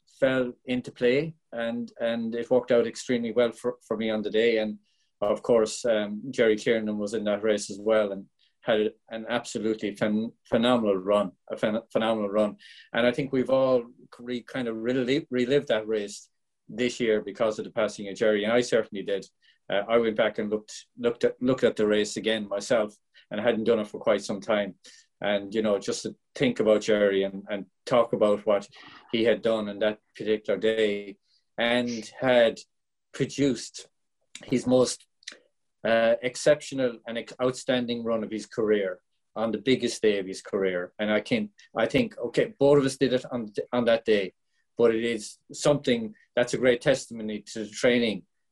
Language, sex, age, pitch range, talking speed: English, male, 30-49, 105-125 Hz, 185 wpm